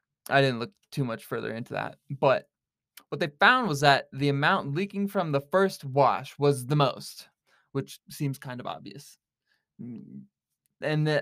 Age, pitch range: 20-39, 130-155 Hz